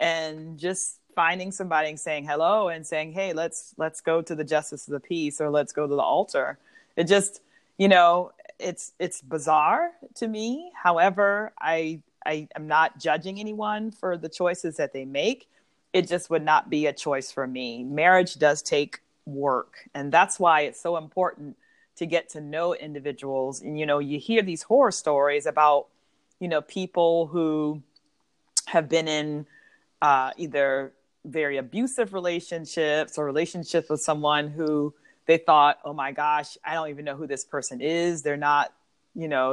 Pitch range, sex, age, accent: 145-180 Hz, female, 30-49, American